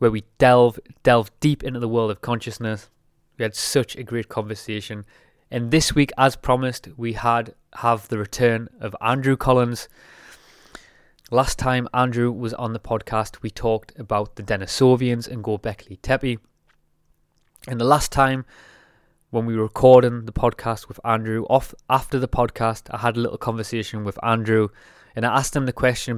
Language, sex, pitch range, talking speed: English, male, 110-125 Hz, 165 wpm